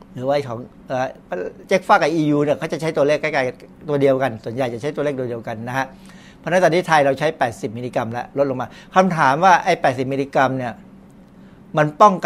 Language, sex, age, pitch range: Thai, male, 60-79, 130-180 Hz